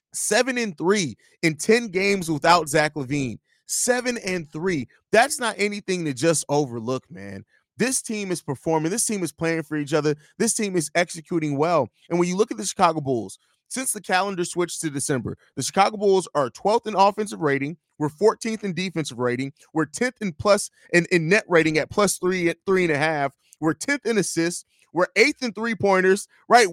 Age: 30-49